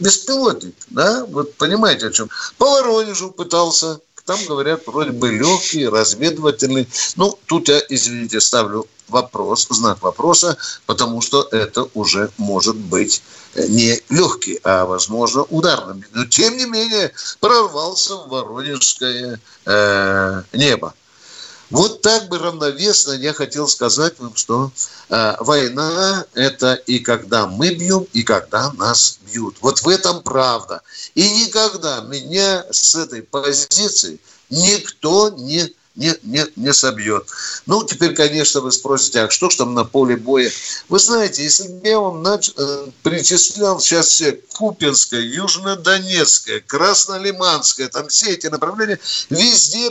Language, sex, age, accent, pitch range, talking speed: Russian, male, 60-79, native, 125-185 Hz, 130 wpm